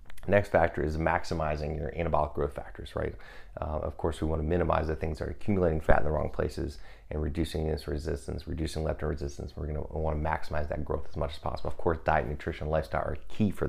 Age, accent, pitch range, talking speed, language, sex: 30-49, American, 75-85 Hz, 230 wpm, English, male